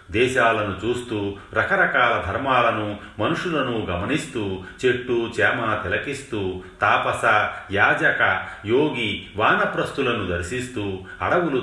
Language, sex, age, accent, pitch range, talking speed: Telugu, male, 40-59, native, 100-120 Hz, 75 wpm